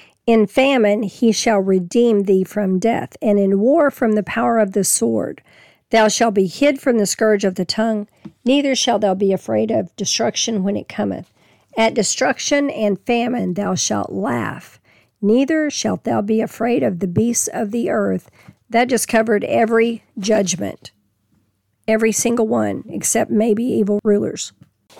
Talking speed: 160 wpm